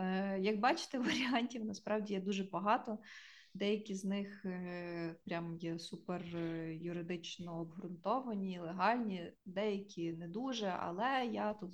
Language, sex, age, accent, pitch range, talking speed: Ukrainian, female, 20-39, native, 175-210 Hz, 115 wpm